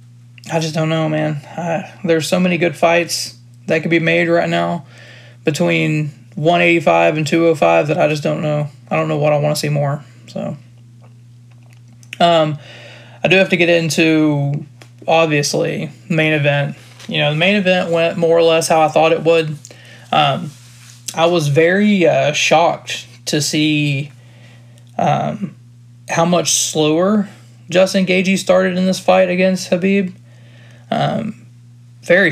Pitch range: 120-165 Hz